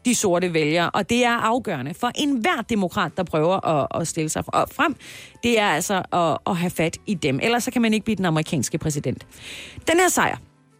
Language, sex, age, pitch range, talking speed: Danish, female, 30-49, 175-235 Hz, 215 wpm